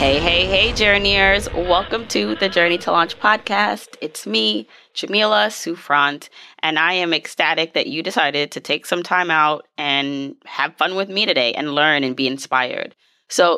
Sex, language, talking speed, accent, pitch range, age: female, English, 170 wpm, American, 145-175 Hz, 20-39